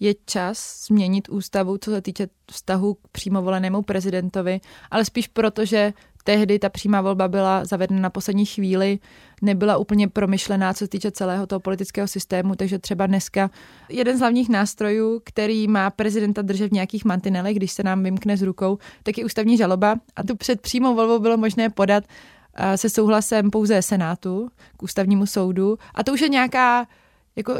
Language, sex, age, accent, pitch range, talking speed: Czech, female, 20-39, native, 195-215 Hz, 170 wpm